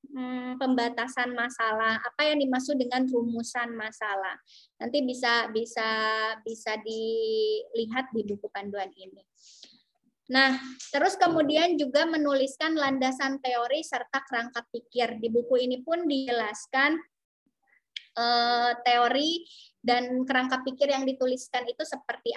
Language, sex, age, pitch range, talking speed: Indonesian, male, 20-39, 235-280 Hz, 105 wpm